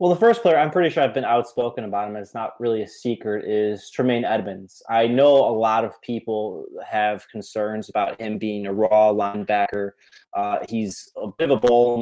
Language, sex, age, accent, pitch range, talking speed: English, male, 20-39, American, 105-120 Hz, 215 wpm